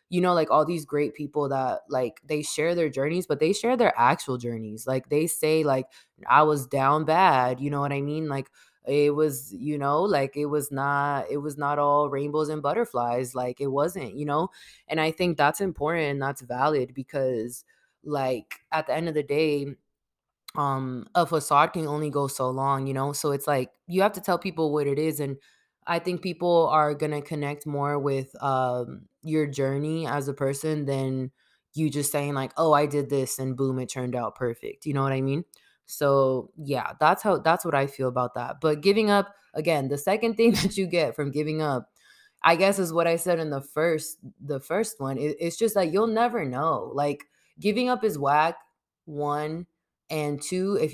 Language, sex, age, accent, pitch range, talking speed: English, female, 20-39, American, 135-160 Hz, 210 wpm